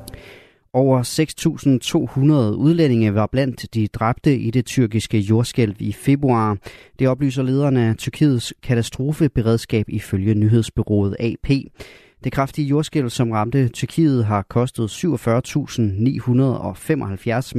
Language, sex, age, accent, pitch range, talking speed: Danish, male, 30-49, native, 105-135 Hz, 105 wpm